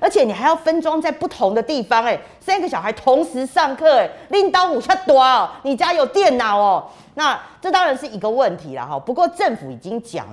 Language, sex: Chinese, female